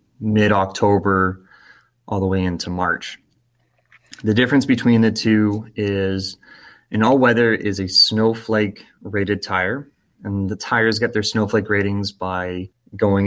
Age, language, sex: 20-39, English, male